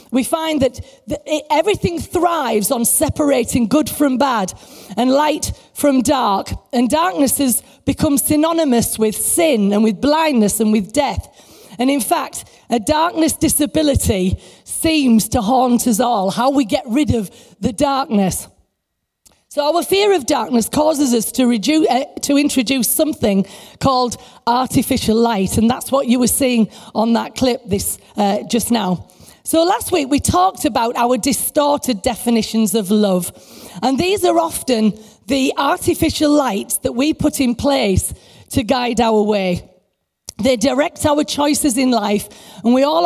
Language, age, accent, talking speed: English, 40-59, British, 155 wpm